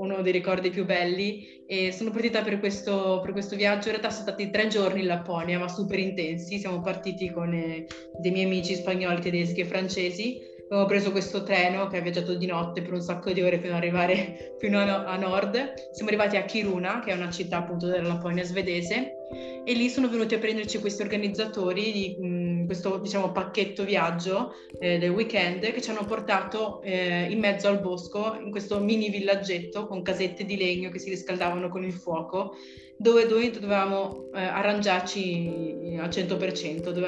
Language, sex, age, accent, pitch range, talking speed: Italian, female, 20-39, native, 175-200 Hz, 190 wpm